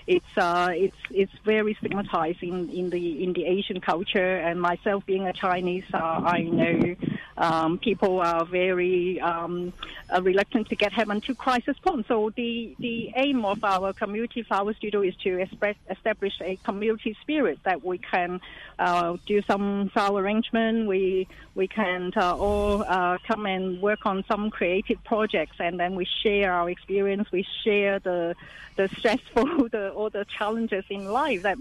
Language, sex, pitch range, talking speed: English, female, 180-215 Hz, 165 wpm